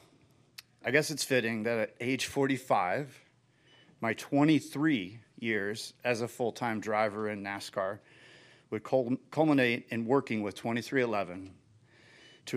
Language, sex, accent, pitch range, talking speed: English, male, American, 110-135 Hz, 115 wpm